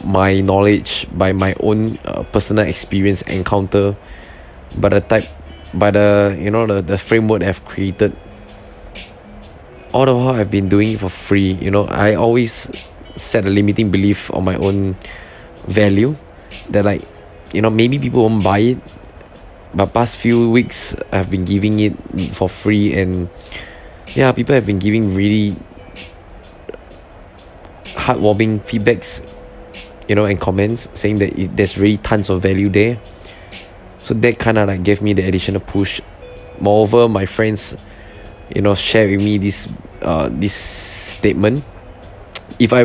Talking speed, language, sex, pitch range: 150 wpm, English, male, 95-105 Hz